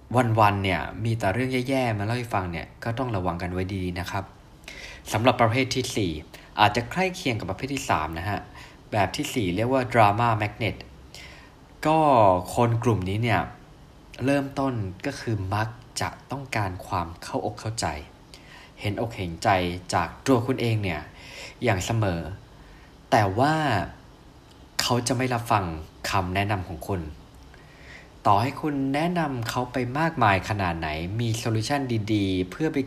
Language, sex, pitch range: Thai, male, 90-125 Hz